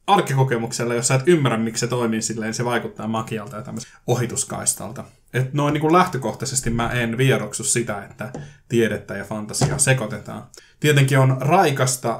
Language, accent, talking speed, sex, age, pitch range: Finnish, native, 150 wpm, male, 20-39, 110-135 Hz